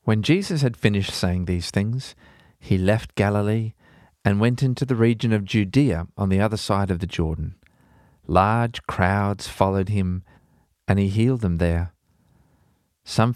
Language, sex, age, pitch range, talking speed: English, male, 40-59, 100-130 Hz, 155 wpm